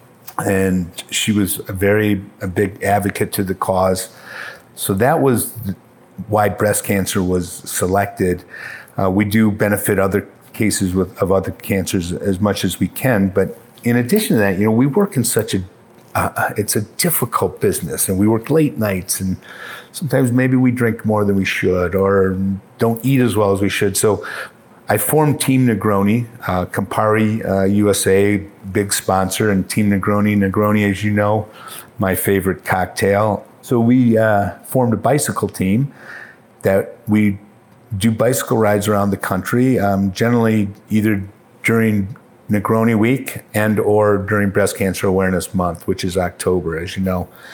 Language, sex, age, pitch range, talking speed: English, male, 50-69, 95-115 Hz, 160 wpm